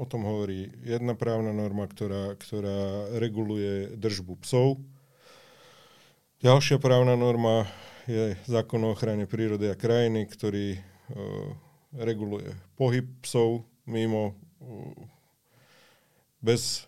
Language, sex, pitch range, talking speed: Slovak, male, 100-120 Hz, 95 wpm